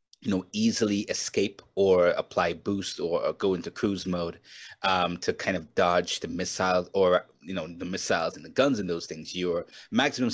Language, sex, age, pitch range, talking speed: English, male, 30-49, 95-120 Hz, 190 wpm